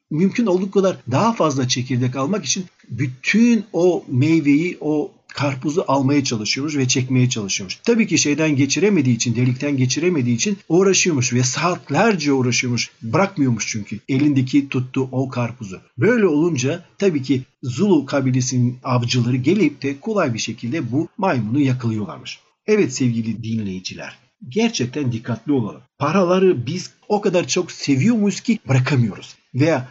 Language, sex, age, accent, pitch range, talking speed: Turkish, male, 50-69, native, 125-180 Hz, 135 wpm